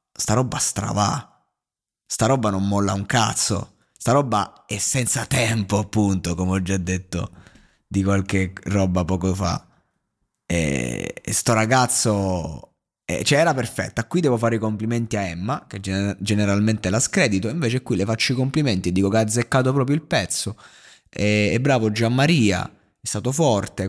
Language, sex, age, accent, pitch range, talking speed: Italian, male, 20-39, native, 100-125 Hz, 160 wpm